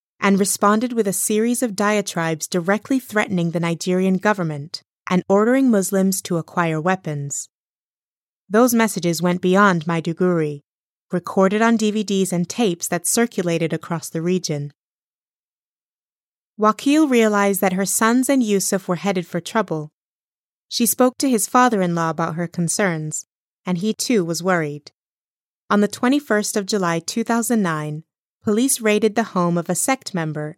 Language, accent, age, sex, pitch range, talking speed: English, American, 20-39, female, 170-210 Hz, 140 wpm